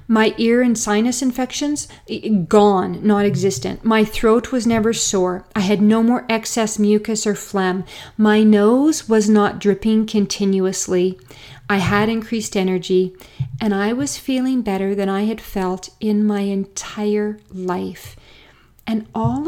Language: English